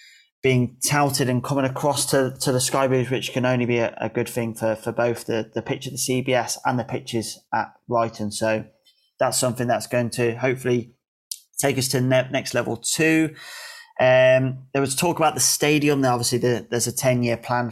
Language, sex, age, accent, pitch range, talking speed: English, male, 20-39, British, 120-135 Hz, 210 wpm